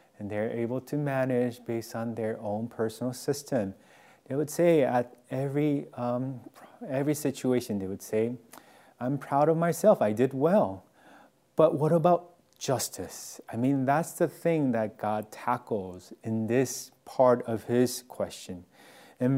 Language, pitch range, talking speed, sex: English, 120-165 Hz, 150 wpm, male